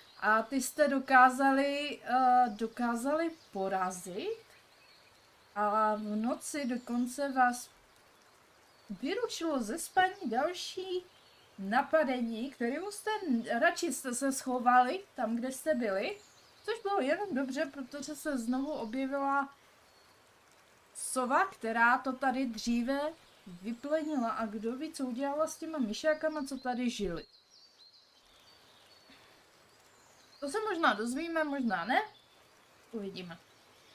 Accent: native